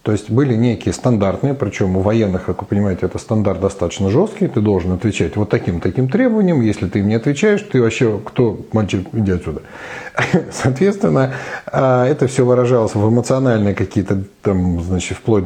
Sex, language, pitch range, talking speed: male, Russian, 100-130 Hz, 165 wpm